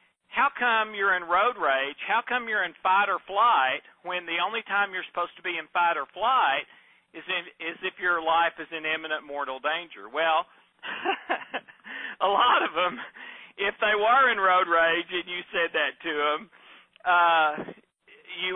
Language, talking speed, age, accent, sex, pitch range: English, 175 wpm, 50-69, American, male, 165-215 Hz